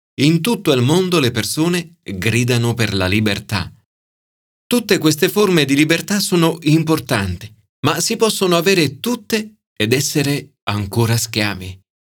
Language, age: Italian, 40-59